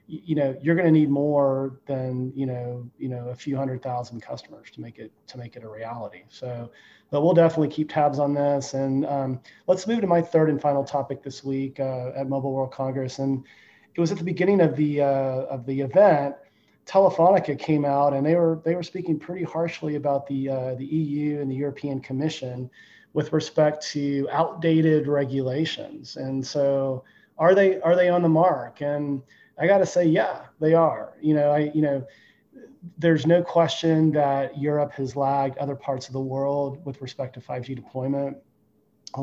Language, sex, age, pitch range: English, male, 30-49, 135-155 Hz